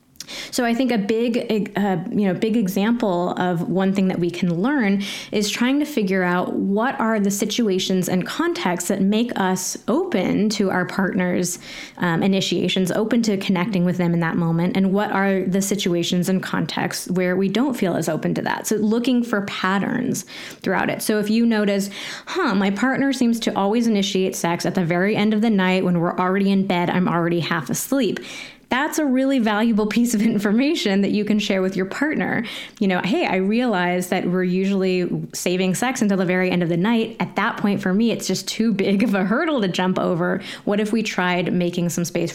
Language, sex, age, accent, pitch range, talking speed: English, female, 20-39, American, 180-225 Hz, 210 wpm